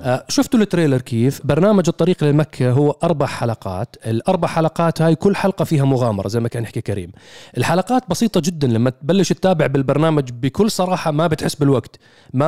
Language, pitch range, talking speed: Arabic, 125-160 Hz, 170 wpm